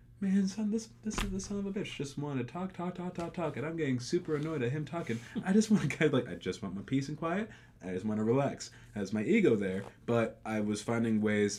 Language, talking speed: English, 280 wpm